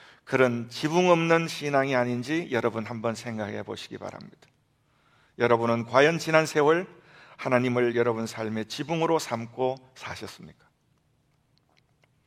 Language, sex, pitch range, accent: Korean, male, 130-170 Hz, native